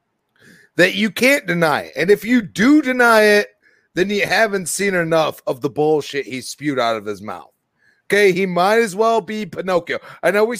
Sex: male